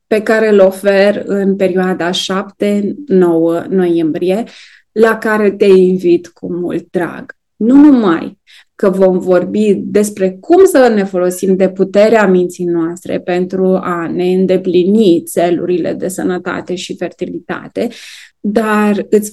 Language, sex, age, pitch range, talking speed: Romanian, female, 20-39, 180-210 Hz, 125 wpm